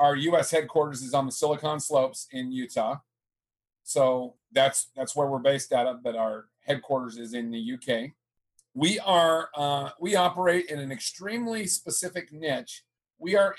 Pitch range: 125-160 Hz